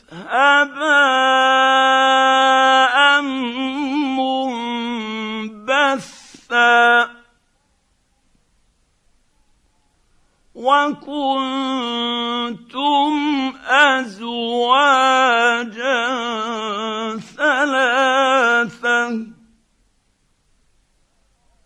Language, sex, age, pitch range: Arabic, male, 50-69, 225-265 Hz